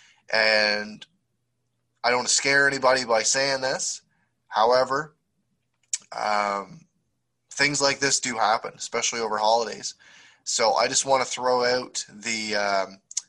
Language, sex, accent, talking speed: English, male, American, 130 wpm